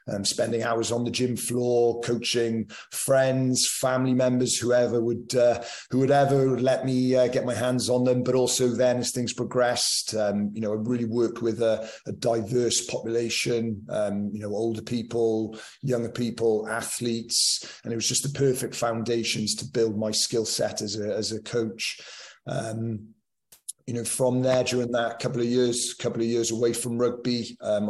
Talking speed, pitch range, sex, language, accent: 185 wpm, 110-125 Hz, male, English, British